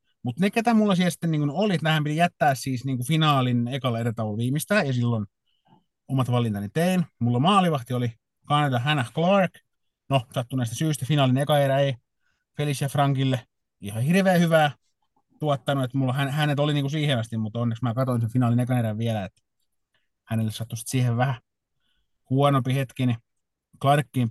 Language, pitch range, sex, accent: Finnish, 120-150 Hz, male, native